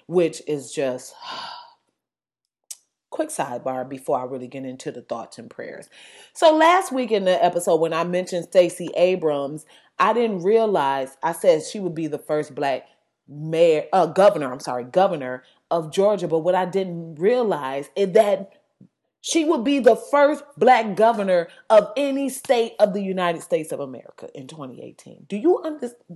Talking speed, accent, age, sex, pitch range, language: 160 wpm, American, 30-49, female, 180-270 Hz, English